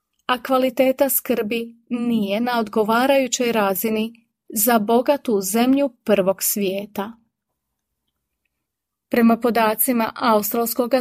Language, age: Croatian, 30-49